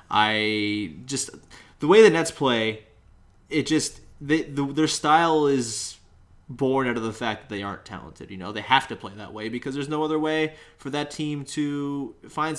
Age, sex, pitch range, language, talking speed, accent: 20-39, male, 105-135 Hz, English, 195 wpm, American